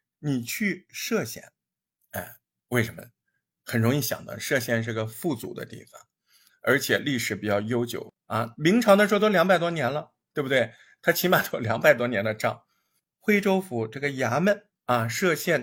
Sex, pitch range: male, 115-180 Hz